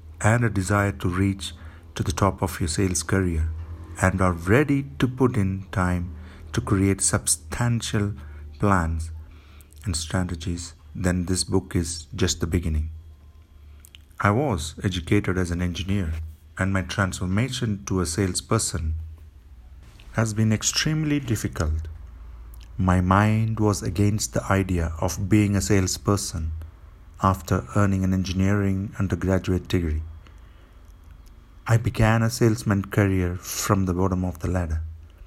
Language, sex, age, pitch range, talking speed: English, male, 50-69, 85-105 Hz, 130 wpm